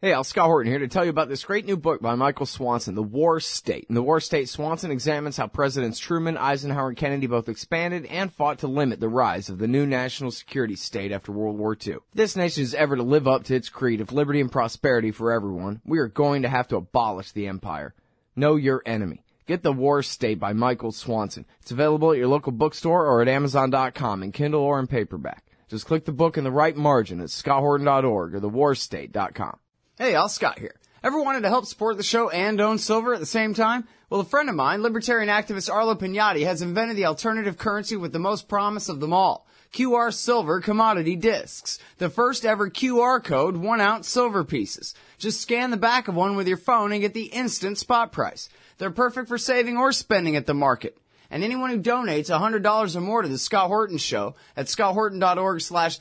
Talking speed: 215 wpm